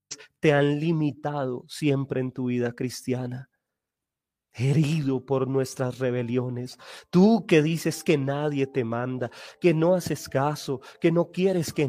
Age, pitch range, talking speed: 30-49, 125-150 Hz, 135 wpm